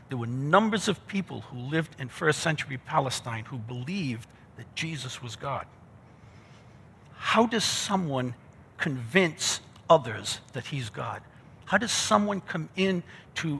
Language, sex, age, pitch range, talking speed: English, male, 60-79, 120-165 Hz, 135 wpm